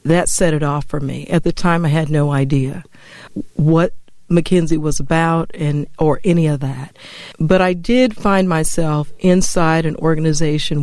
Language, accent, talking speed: English, American, 165 wpm